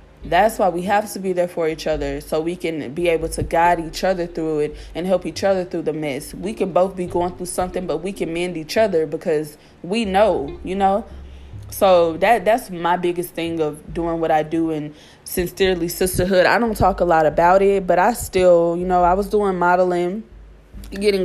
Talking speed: 220 wpm